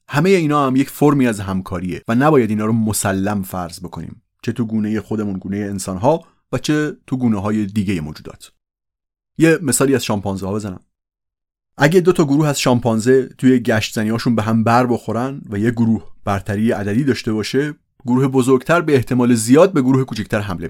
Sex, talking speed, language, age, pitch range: male, 175 wpm, Persian, 30-49, 100-135 Hz